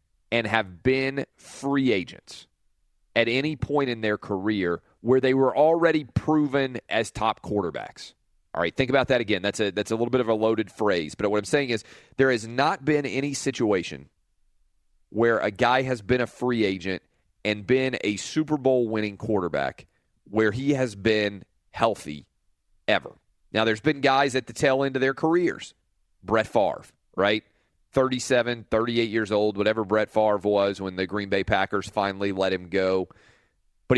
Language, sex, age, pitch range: English, male, 30-49, 100-130 Hz